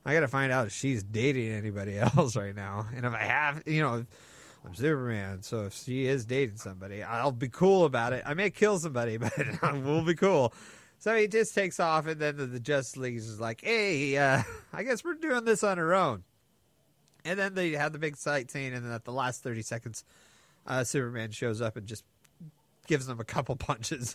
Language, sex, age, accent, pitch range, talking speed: English, male, 30-49, American, 130-195 Hz, 215 wpm